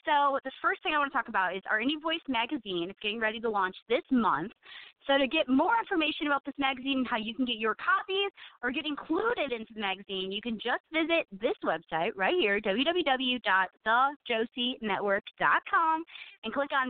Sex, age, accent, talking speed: female, 30-49, American, 190 wpm